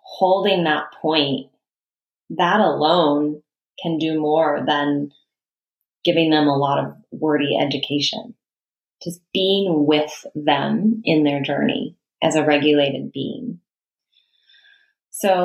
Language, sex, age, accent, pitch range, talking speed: English, female, 20-39, American, 150-180 Hz, 110 wpm